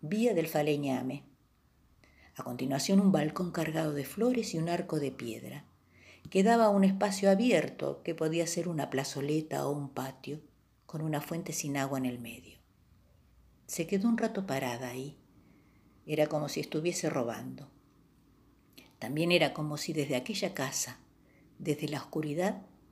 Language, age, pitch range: Spanish, 50-69, 135-180 Hz